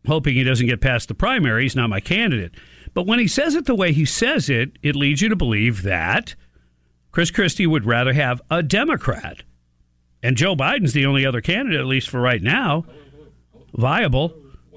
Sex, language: male, English